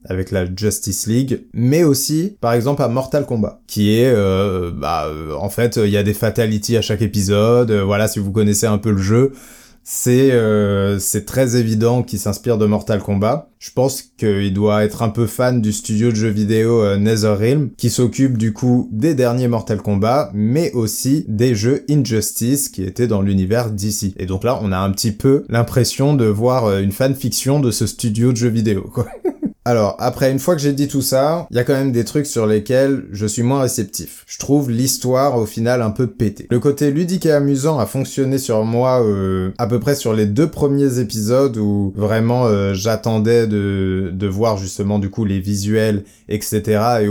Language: French